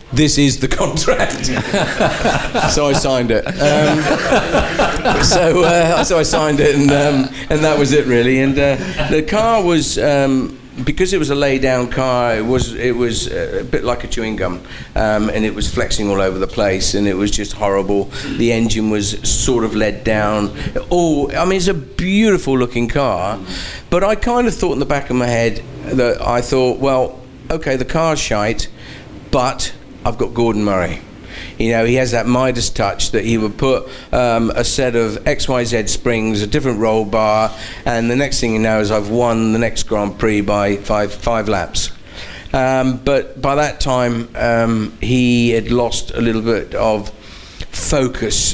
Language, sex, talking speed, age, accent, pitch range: English, male, 185 wpm, 50-69, British, 110-135 Hz